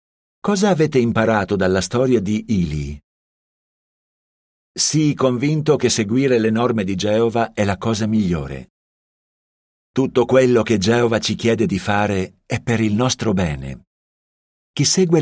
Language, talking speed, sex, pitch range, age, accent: Italian, 135 wpm, male, 95-125 Hz, 50-69, native